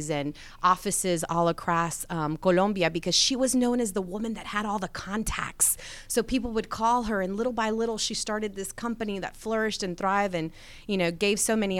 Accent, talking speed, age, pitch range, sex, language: American, 210 wpm, 30-49, 170-200 Hz, female, English